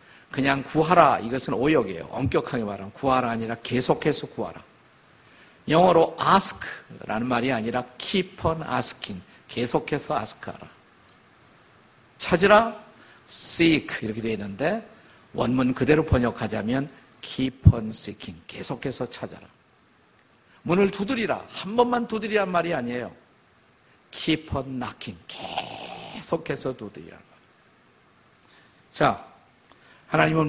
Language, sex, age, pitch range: Korean, male, 50-69, 130-185 Hz